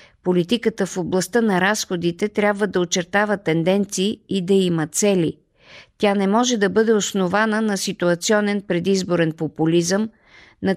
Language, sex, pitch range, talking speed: Bulgarian, female, 175-205 Hz, 135 wpm